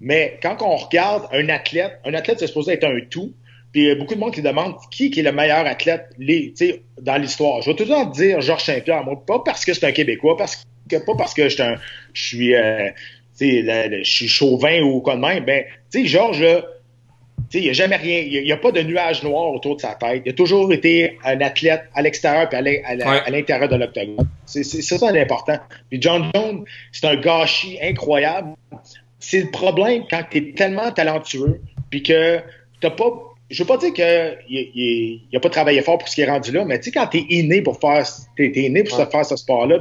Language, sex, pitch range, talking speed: French, male, 130-170 Hz, 220 wpm